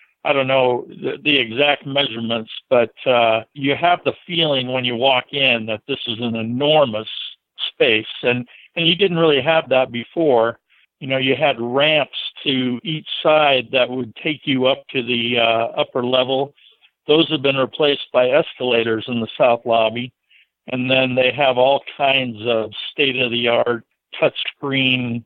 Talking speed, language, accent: 165 wpm, English, American